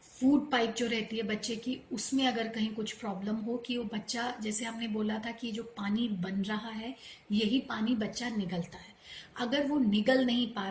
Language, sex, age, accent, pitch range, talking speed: Hindi, female, 30-49, native, 215-250 Hz, 200 wpm